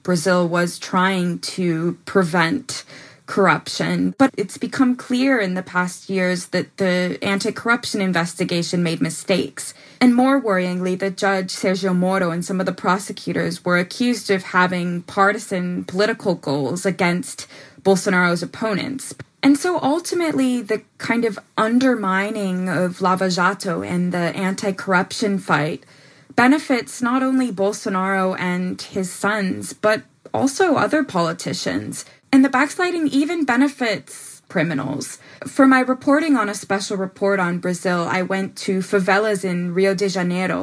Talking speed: 135 wpm